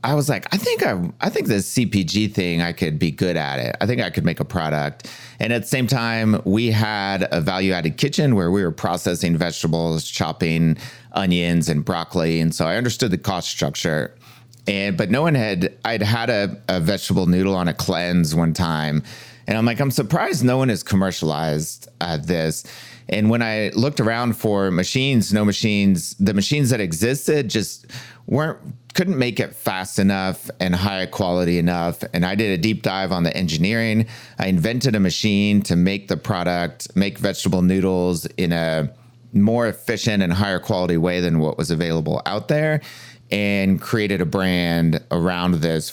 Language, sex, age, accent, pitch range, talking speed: English, male, 30-49, American, 90-115 Hz, 185 wpm